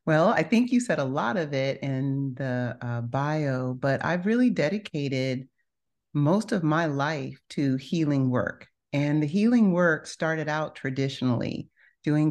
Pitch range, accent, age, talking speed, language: 130-160 Hz, American, 40-59, 155 wpm, English